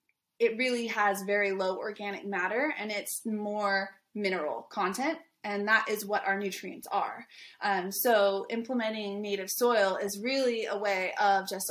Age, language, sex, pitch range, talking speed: 20-39, English, female, 200-245 Hz, 155 wpm